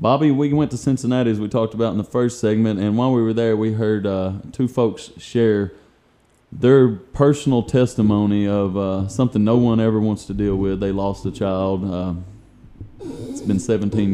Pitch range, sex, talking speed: 100-115 Hz, male, 190 wpm